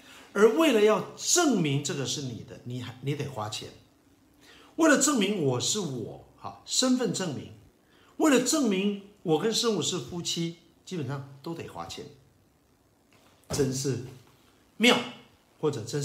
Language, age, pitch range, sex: Chinese, 50-69, 125-195 Hz, male